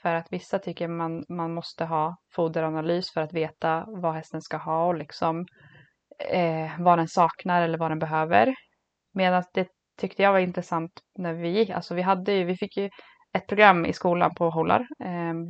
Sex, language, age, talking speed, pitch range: female, English, 20-39, 180 wpm, 160-185 Hz